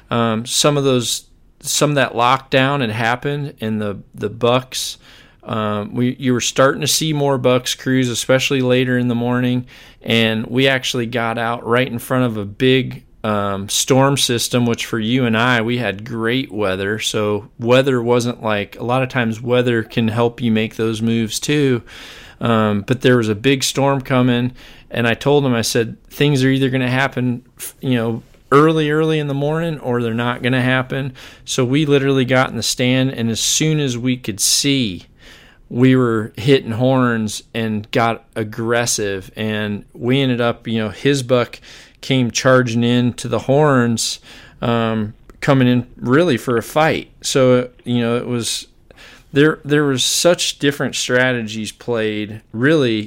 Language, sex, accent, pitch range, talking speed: English, male, American, 115-130 Hz, 175 wpm